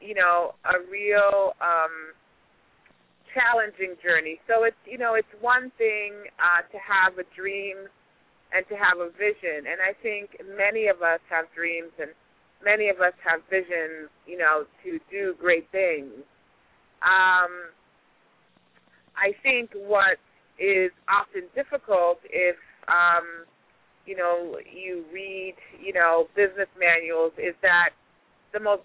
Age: 30-49